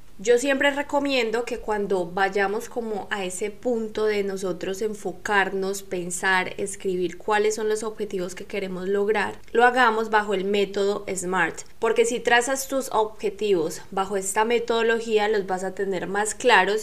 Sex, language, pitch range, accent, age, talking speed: female, Spanish, 195-235 Hz, Colombian, 10-29, 150 wpm